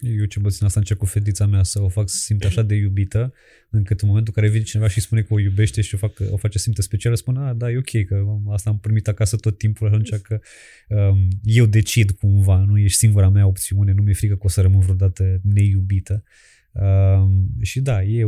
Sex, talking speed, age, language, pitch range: male, 235 wpm, 20-39, Romanian, 95-110 Hz